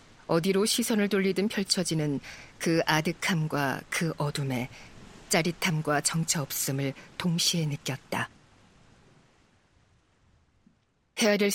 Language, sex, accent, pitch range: Korean, female, native, 150-200 Hz